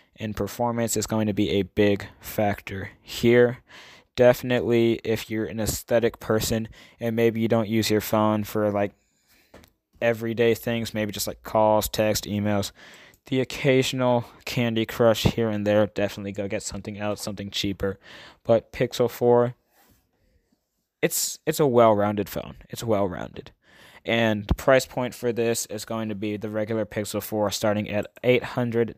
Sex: male